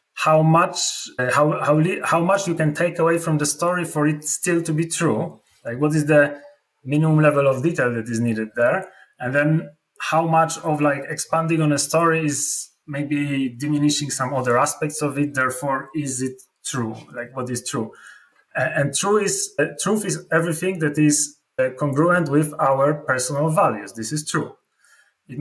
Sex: male